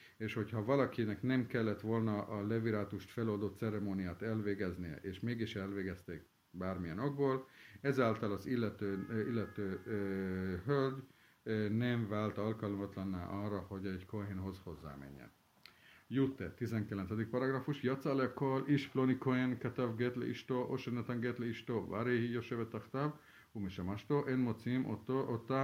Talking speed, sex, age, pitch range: 115 wpm, male, 50-69, 100-125 Hz